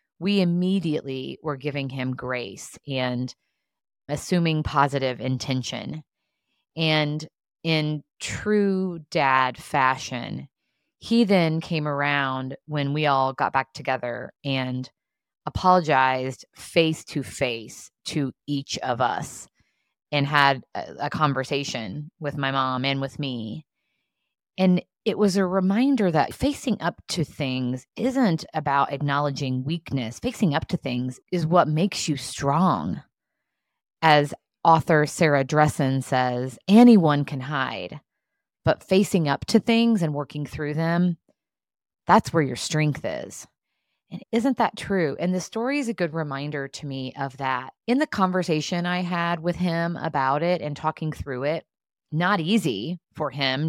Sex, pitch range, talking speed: female, 135-175 Hz, 135 wpm